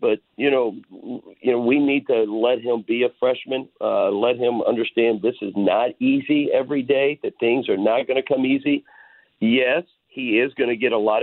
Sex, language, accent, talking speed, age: male, English, American, 210 wpm, 50-69